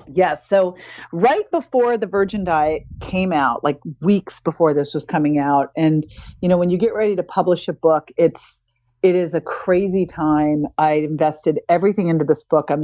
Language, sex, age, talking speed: English, female, 40-59, 185 wpm